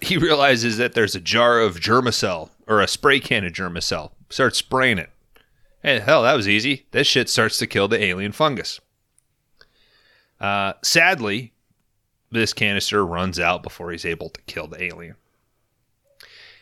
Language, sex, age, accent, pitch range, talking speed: English, male, 30-49, American, 95-120 Hz, 160 wpm